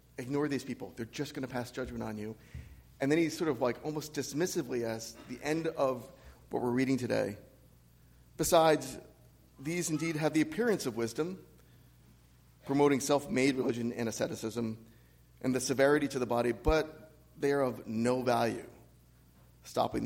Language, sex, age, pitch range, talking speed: English, male, 40-59, 110-145 Hz, 160 wpm